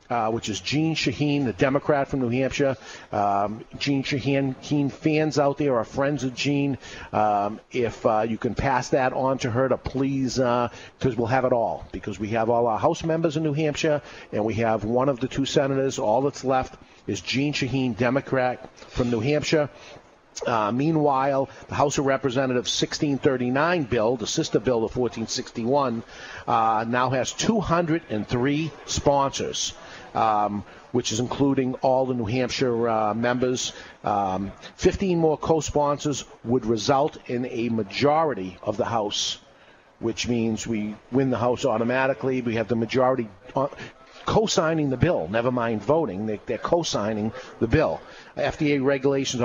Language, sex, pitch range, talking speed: English, male, 115-145 Hz, 155 wpm